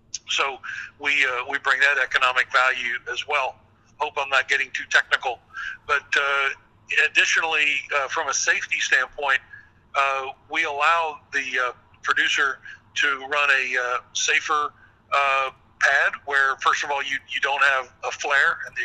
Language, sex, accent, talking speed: English, male, American, 155 wpm